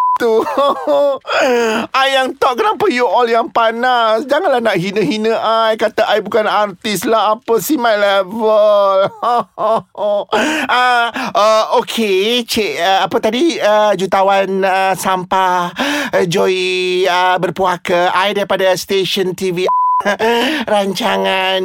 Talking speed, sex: 115 wpm, male